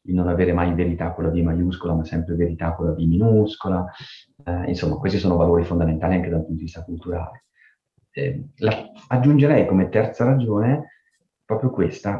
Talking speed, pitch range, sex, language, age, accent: 175 wpm, 85-95 Hz, male, Italian, 30-49, native